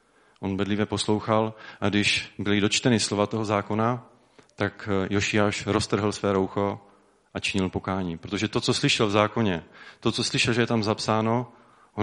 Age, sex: 30-49, male